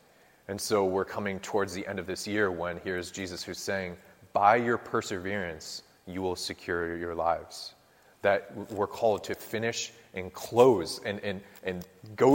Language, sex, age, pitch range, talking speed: English, male, 30-49, 90-110 Hz, 160 wpm